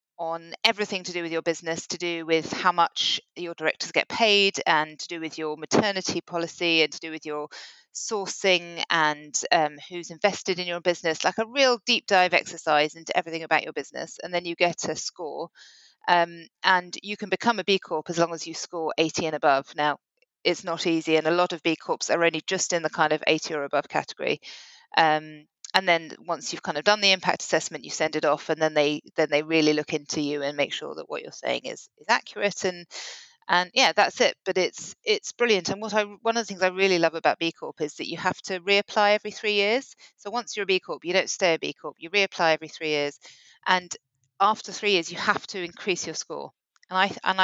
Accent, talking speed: British, 235 wpm